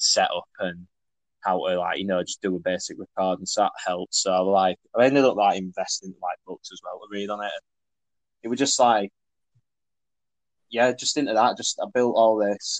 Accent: British